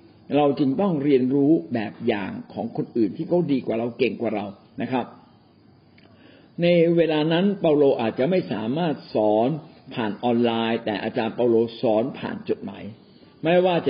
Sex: male